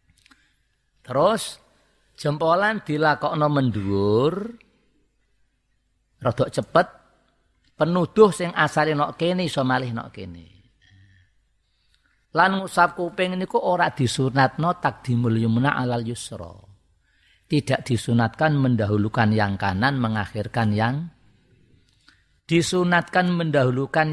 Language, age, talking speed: Indonesian, 50-69, 90 wpm